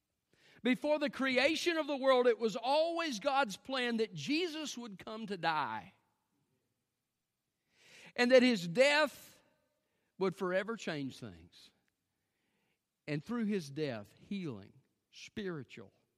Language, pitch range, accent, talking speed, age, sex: English, 115-180 Hz, American, 115 wpm, 50-69, male